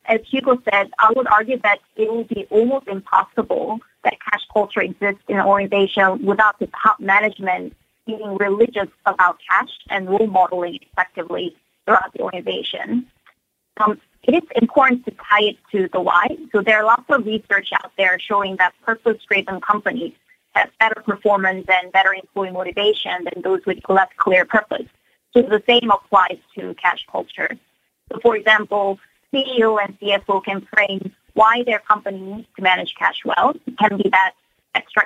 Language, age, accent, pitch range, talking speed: English, 30-49, American, 195-235 Hz, 170 wpm